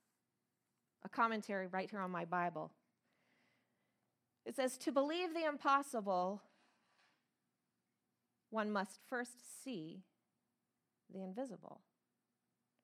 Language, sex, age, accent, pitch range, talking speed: English, female, 30-49, American, 195-325 Hz, 90 wpm